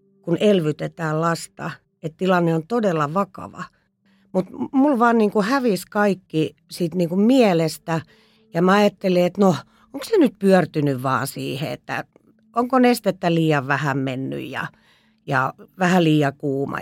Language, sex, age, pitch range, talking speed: Finnish, female, 40-59, 160-215 Hz, 140 wpm